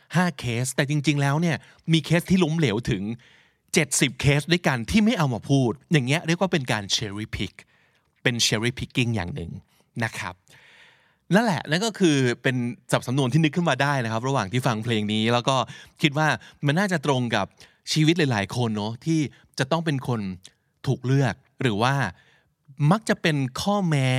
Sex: male